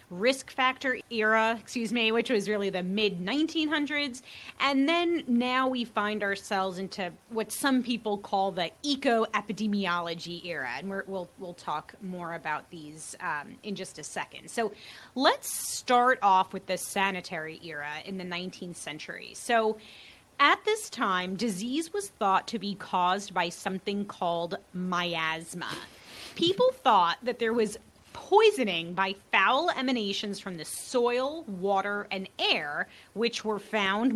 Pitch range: 190-245 Hz